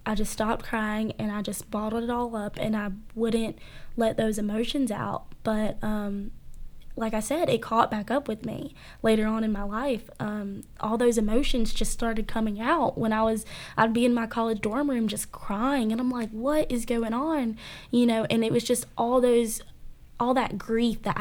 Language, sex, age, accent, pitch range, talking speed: English, female, 10-29, American, 215-235 Hz, 205 wpm